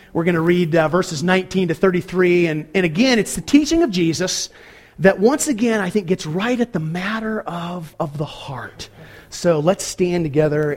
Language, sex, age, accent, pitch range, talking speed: English, male, 40-59, American, 170-220 Hz, 195 wpm